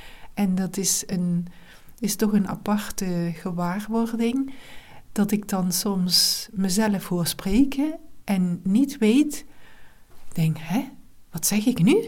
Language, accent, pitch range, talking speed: Dutch, Dutch, 170-215 Hz, 130 wpm